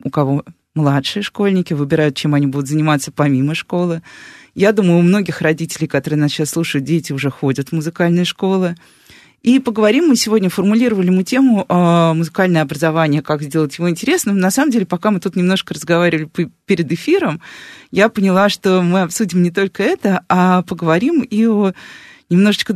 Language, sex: Russian, female